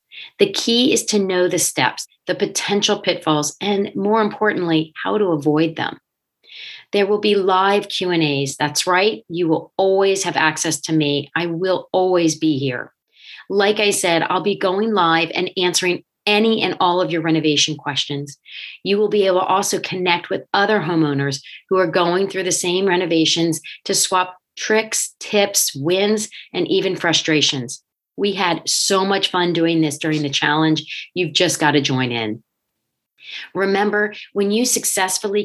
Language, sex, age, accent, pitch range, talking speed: English, female, 40-59, American, 160-200 Hz, 165 wpm